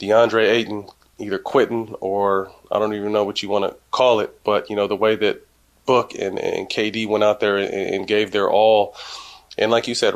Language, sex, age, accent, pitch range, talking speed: English, male, 30-49, American, 105-120 Hz, 220 wpm